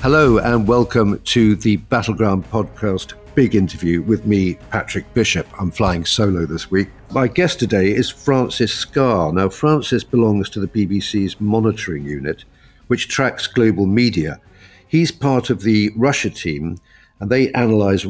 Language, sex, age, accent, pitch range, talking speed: English, male, 50-69, British, 95-120 Hz, 150 wpm